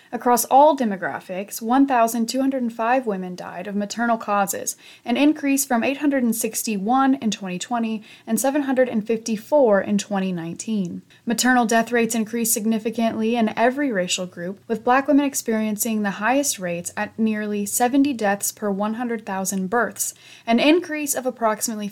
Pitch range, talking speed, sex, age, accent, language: 205-255 Hz, 125 wpm, female, 20-39, American, English